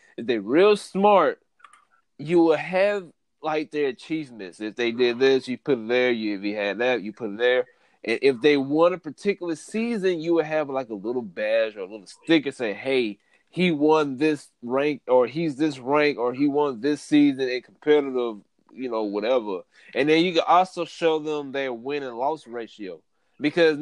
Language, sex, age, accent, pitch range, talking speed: English, male, 20-39, American, 130-170 Hz, 200 wpm